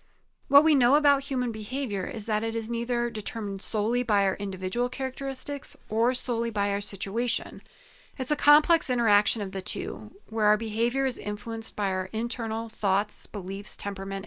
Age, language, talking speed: 30-49, English, 170 wpm